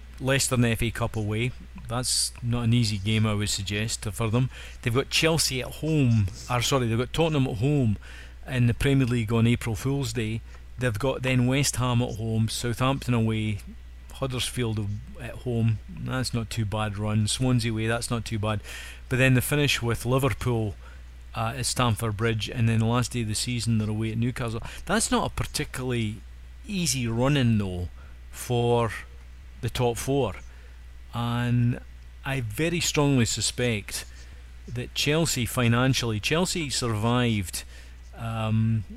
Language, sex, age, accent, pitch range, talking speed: English, male, 40-59, British, 105-125 Hz, 160 wpm